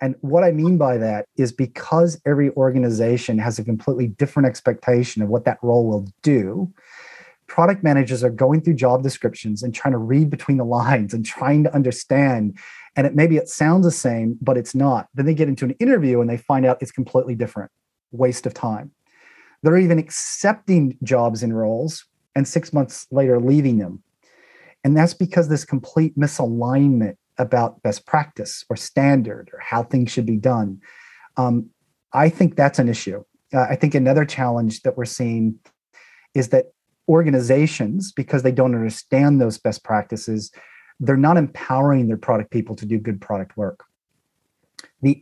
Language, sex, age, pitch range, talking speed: English, male, 30-49, 120-145 Hz, 175 wpm